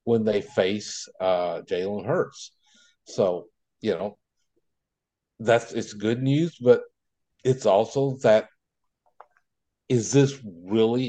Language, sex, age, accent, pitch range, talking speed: English, male, 60-79, American, 105-140 Hz, 110 wpm